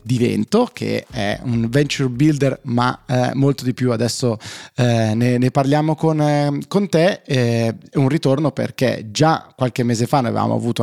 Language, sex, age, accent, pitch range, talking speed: Italian, male, 20-39, native, 115-135 Hz, 185 wpm